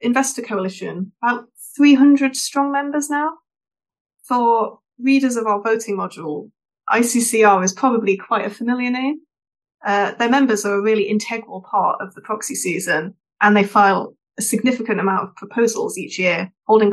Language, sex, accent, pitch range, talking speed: English, female, British, 200-245 Hz, 150 wpm